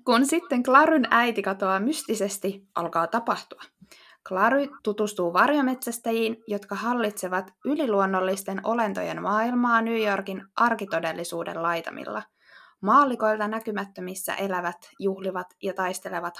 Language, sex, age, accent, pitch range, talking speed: Finnish, female, 20-39, native, 190-230 Hz, 95 wpm